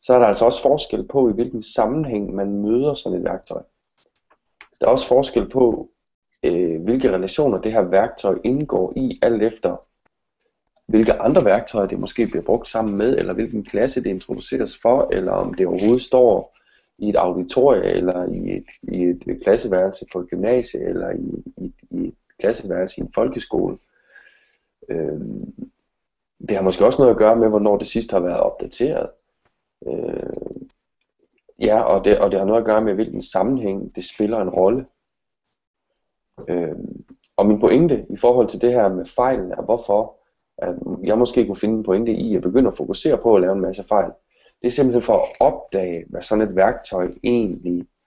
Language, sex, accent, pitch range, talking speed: Danish, male, native, 95-135 Hz, 175 wpm